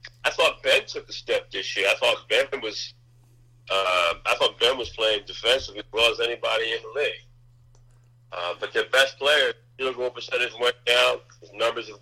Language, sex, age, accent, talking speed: English, male, 50-69, American, 195 wpm